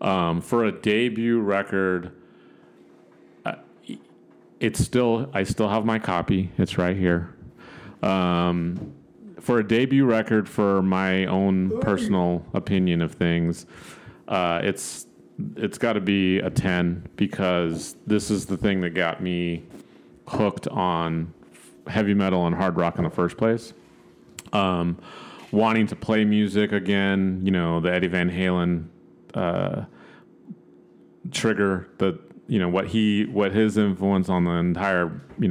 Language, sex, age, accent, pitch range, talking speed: English, male, 30-49, American, 85-100 Hz, 135 wpm